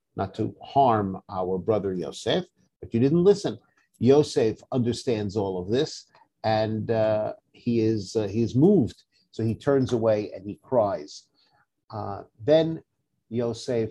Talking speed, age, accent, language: 140 wpm, 50-69, American, English